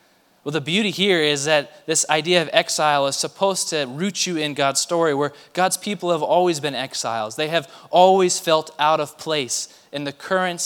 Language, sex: English, male